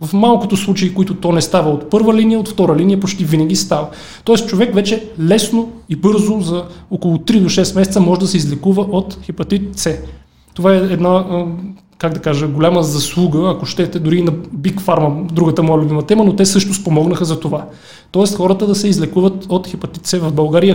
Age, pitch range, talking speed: 30-49, 160-190 Hz, 200 wpm